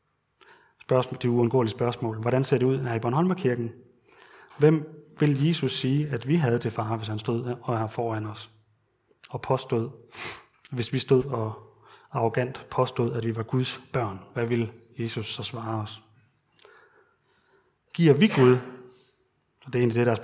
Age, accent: 30-49, native